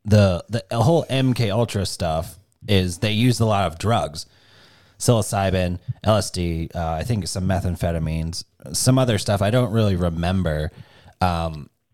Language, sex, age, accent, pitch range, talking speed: English, male, 30-49, American, 90-115 Hz, 135 wpm